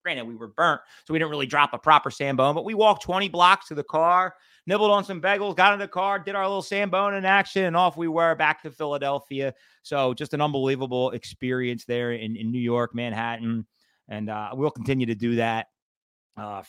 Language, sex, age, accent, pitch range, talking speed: English, male, 30-49, American, 115-160 Hz, 220 wpm